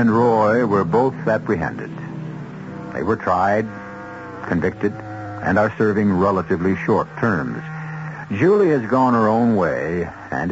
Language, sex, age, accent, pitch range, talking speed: English, male, 70-89, American, 95-130 Hz, 125 wpm